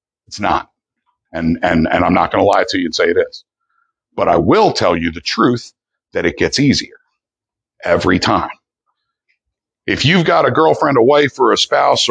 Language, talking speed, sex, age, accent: English, 190 wpm, male, 60-79, American